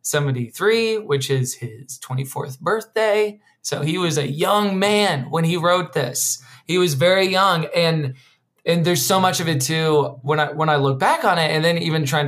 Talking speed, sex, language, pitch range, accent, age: 195 wpm, male, English, 130-165 Hz, American, 20-39